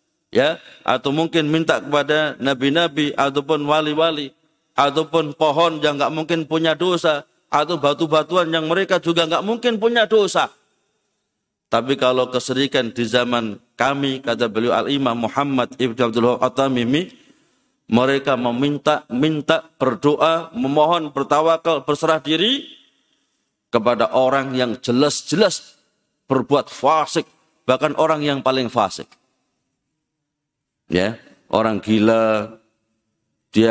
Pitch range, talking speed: 125-190 Hz, 105 wpm